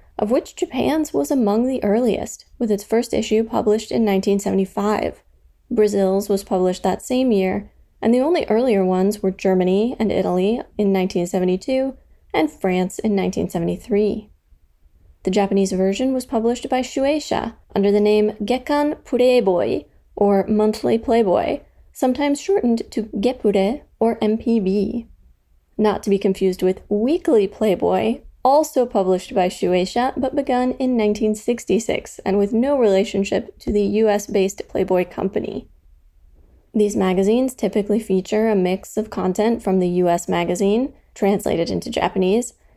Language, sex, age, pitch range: English, female, 20-39, 190-240 Hz